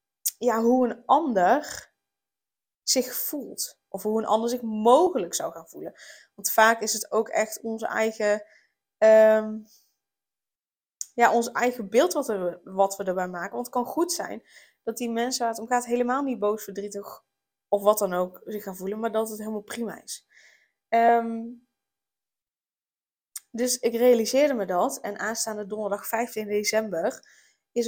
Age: 20-39